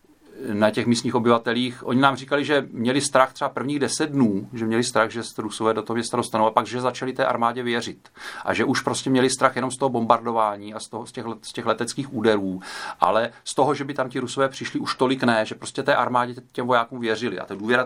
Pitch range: 95-125 Hz